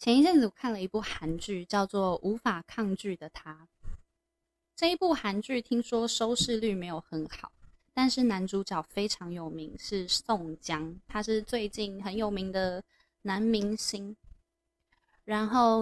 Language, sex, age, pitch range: Chinese, female, 20-39, 180-235 Hz